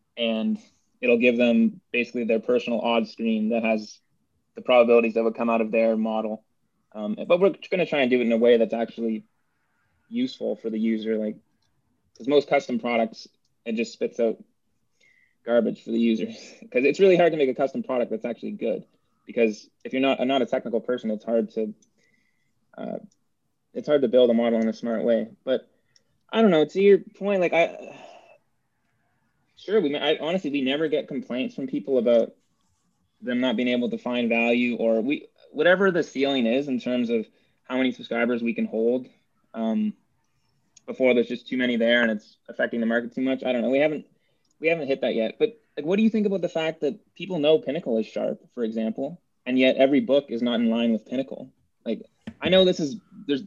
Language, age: English, 20-39